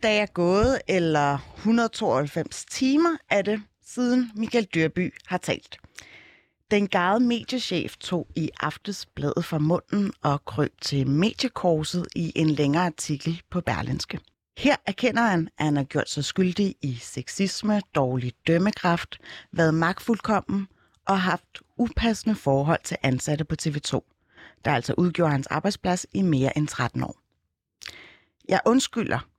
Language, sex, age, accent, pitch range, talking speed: Danish, female, 30-49, native, 145-205 Hz, 135 wpm